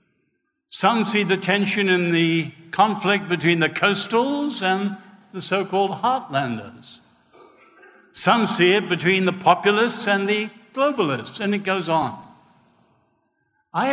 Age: 60-79